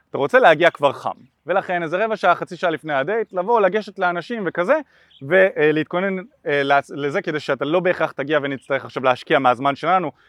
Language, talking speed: Hebrew, 175 wpm